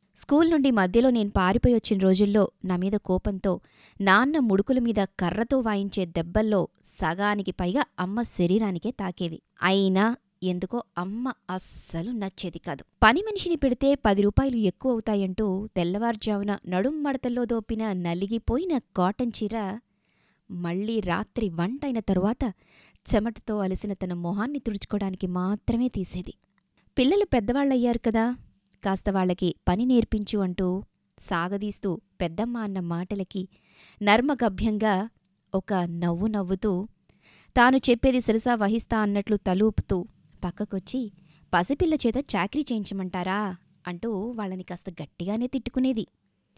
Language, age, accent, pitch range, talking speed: Telugu, 20-39, native, 185-230 Hz, 100 wpm